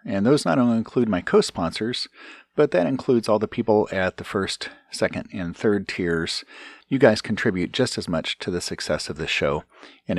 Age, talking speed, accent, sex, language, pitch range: 40-59, 195 wpm, American, male, English, 90-115 Hz